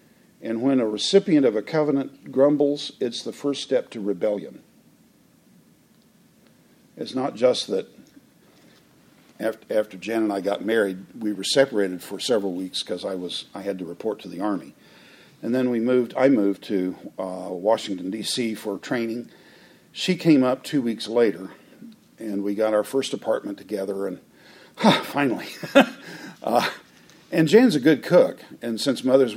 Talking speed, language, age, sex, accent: 155 wpm, English, 50-69, male, American